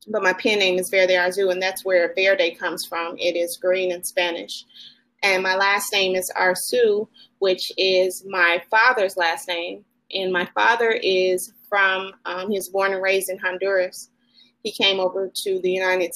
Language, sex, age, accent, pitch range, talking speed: English, female, 30-49, American, 180-200 Hz, 180 wpm